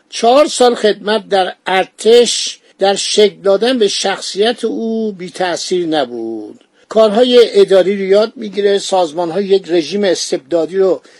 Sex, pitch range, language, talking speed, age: male, 190-240 Hz, Persian, 130 wpm, 50-69